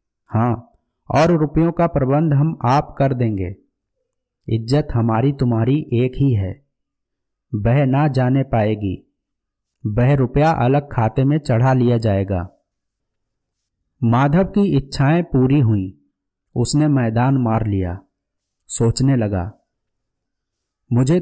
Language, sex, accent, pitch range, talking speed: Hindi, male, native, 110-150 Hz, 110 wpm